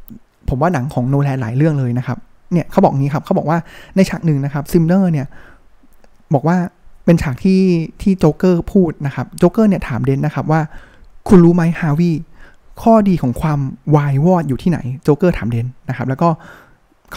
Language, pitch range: Thai, 135-175 Hz